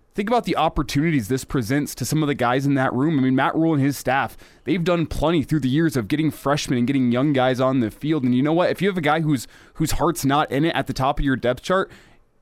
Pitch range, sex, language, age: 130-155 Hz, male, English, 20-39